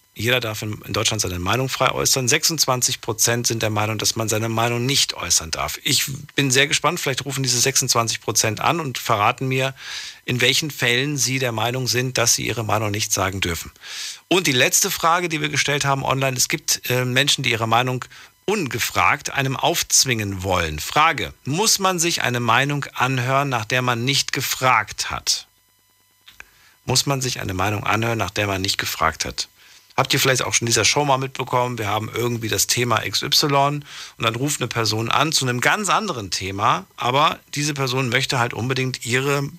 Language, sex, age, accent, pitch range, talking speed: German, male, 50-69, German, 110-135 Hz, 185 wpm